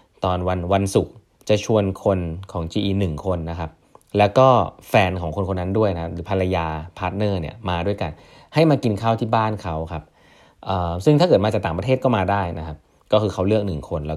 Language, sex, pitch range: Thai, male, 85-105 Hz